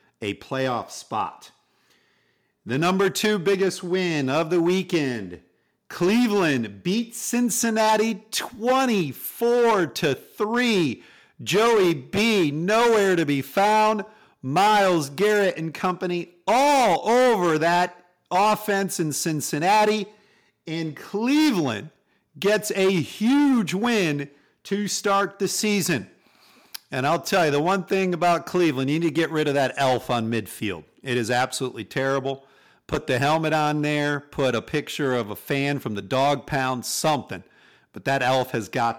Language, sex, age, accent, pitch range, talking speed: English, male, 50-69, American, 135-195 Hz, 135 wpm